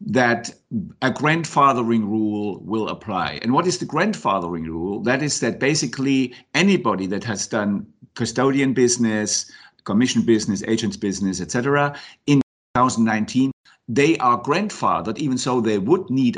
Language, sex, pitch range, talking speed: English, male, 105-140 Hz, 135 wpm